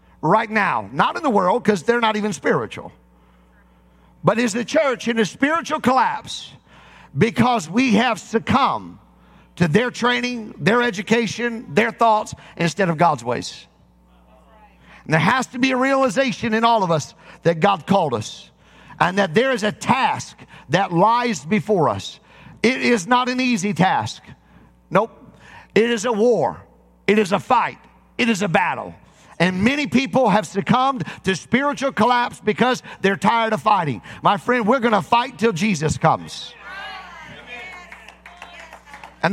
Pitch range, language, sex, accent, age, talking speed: 195-250 Hz, English, male, American, 50-69, 155 wpm